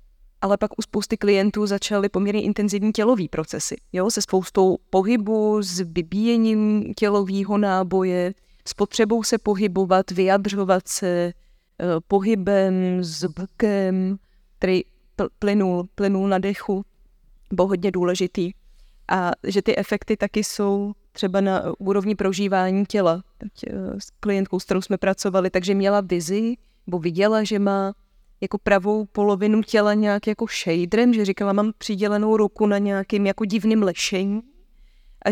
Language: Czech